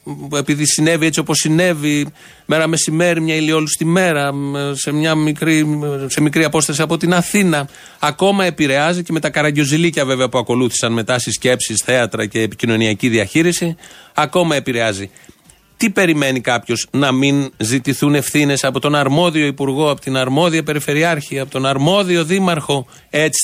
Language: Greek